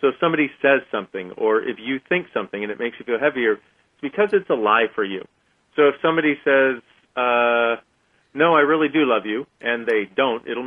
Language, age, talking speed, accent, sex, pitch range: English, 40-59, 215 wpm, American, male, 120-150 Hz